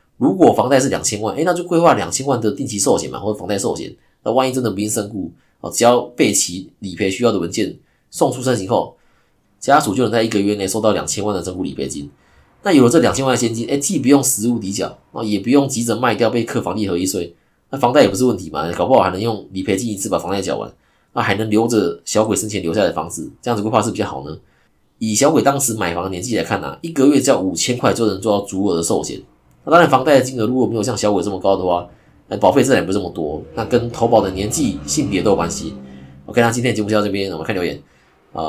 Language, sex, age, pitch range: Chinese, male, 20-39, 95-120 Hz